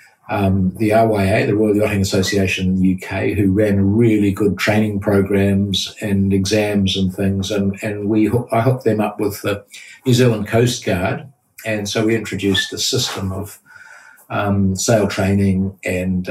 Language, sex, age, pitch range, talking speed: English, male, 50-69, 100-120 Hz, 165 wpm